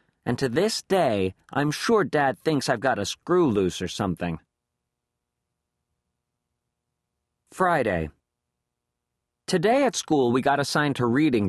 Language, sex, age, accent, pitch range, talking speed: English, male, 40-59, American, 105-155 Hz, 125 wpm